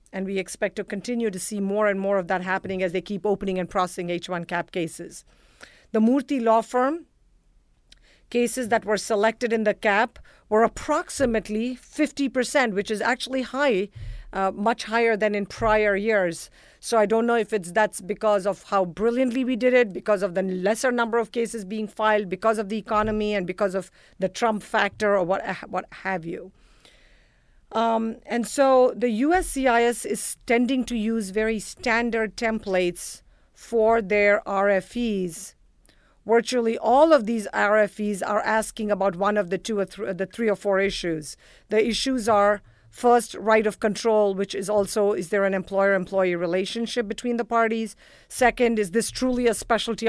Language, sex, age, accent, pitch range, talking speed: English, female, 50-69, Indian, 195-230 Hz, 170 wpm